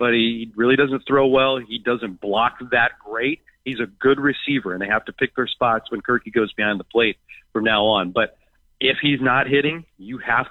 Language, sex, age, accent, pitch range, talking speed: English, male, 40-59, American, 115-140 Hz, 215 wpm